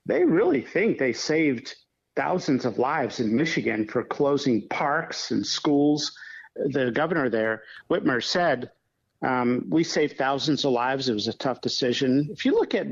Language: English